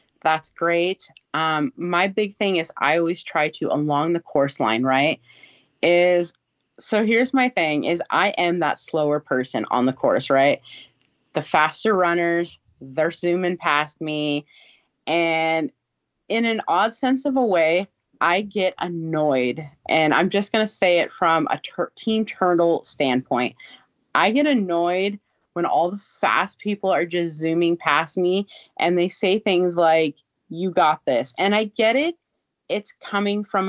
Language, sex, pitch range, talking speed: English, female, 155-190 Hz, 160 wpm